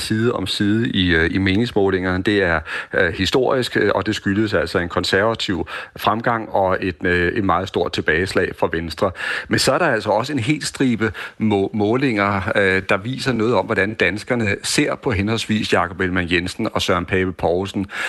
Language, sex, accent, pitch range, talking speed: Danish, male, native, 95-115 Hz, 175 wpm